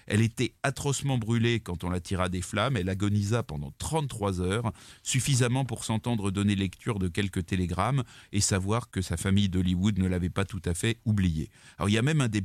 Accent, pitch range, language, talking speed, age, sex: French, 95-125 Hz, French, 205 wpm, 30-49, male